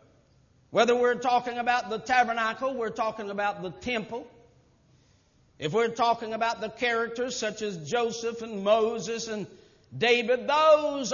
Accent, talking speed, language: American, 135 wpm, English